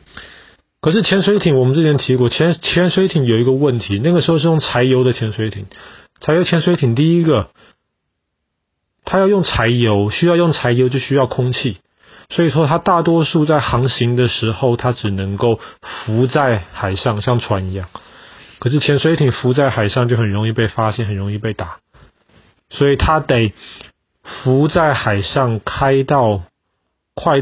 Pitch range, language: 100-130 Hz, Chinese